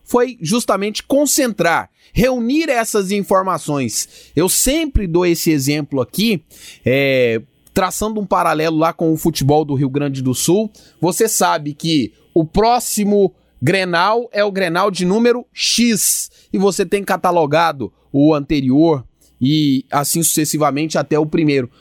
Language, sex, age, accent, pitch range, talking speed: Portuguese, male, 20-39, Brazilian, 155-205 Hz, 135 wpm